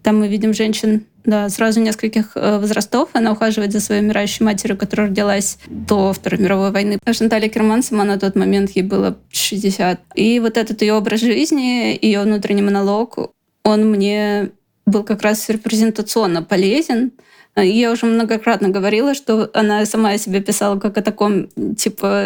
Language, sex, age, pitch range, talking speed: Russian, female, 20-39, 205-230 Hz, 160 wpm